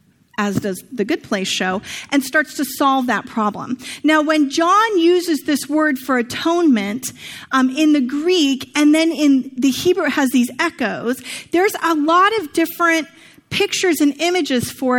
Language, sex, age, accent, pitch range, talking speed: English, female, 30-49, American, 265-330 Hz, 170 wpm